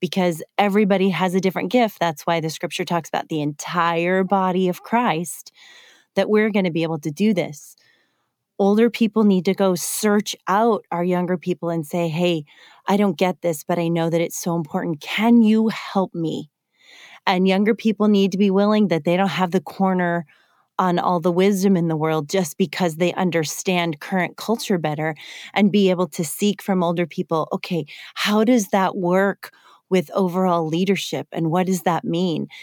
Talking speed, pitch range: 190 wpm, 170-200 Hz